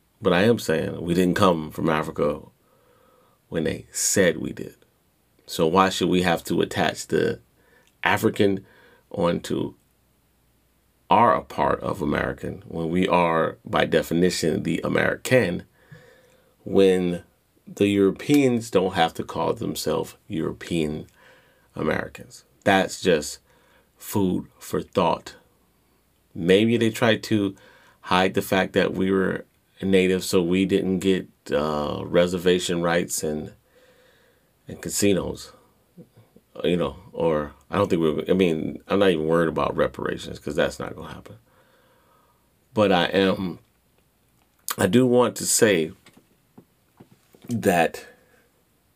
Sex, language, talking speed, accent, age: male, English, 125 wpm, American, 30-49